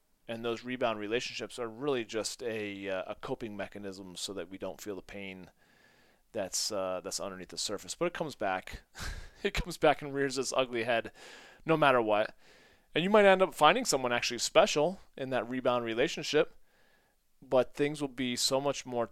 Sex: male